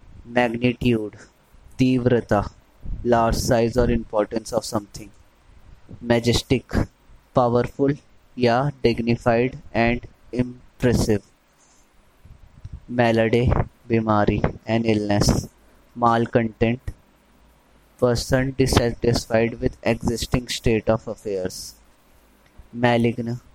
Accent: native